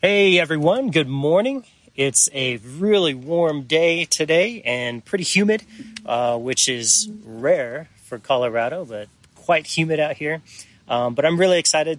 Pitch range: 115-150 Hz